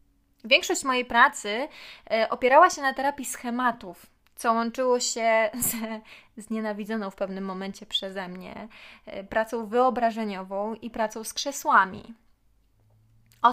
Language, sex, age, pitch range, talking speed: Polish, female, 20-39, 210-245 Hz, 115 wpm